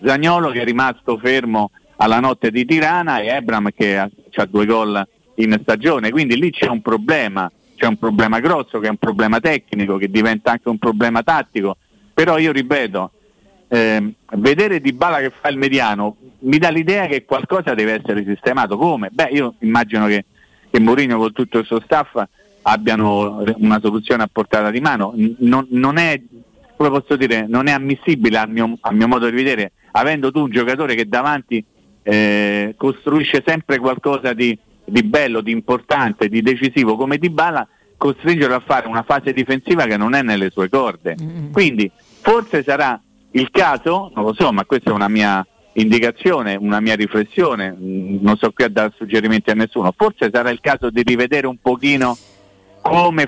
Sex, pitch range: male, 110-145 Hz